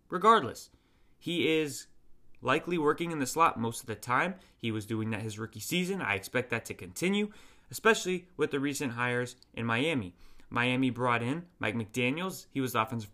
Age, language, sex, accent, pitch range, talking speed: 20-39, English, male, American, 115-165 Hz, 185 wpm